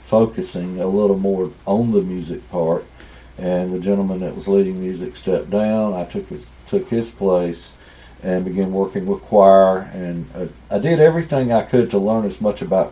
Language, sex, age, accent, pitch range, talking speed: English, male, 40-59, American, 95-115 Hz, 185 wpm